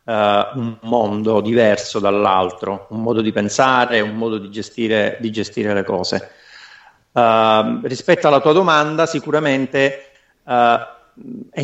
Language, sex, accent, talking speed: Italian, male, native, 110 wpm